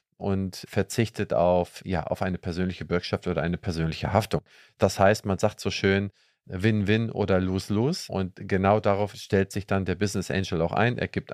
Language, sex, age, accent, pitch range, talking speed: German, male, 40-59, German, 95-110 Hz, 185 wpm